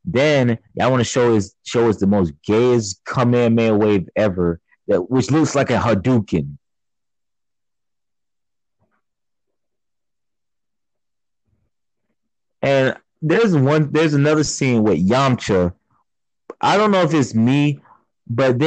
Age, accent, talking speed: 30-49, American, 115 wpm